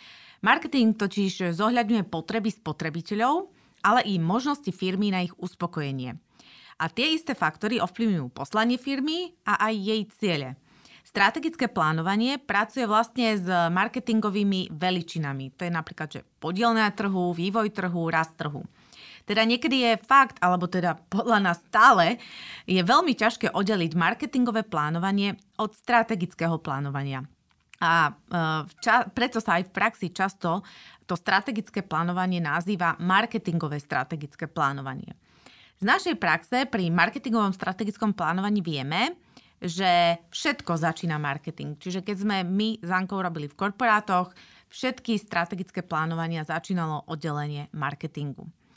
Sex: female